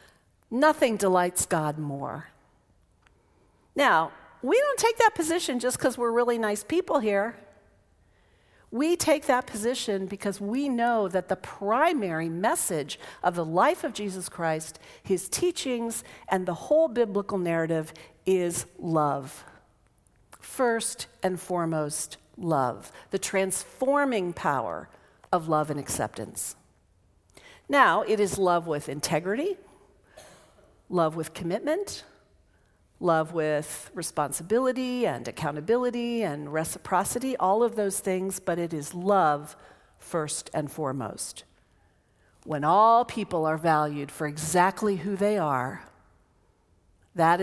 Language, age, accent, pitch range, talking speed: English, 50-69, American, 150-215 Hz, 115 wpm